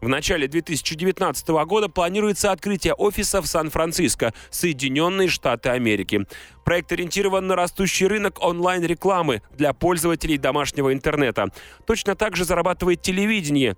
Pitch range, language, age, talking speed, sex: 145-185 Hz, Russian, 30-49, 120 wpm, male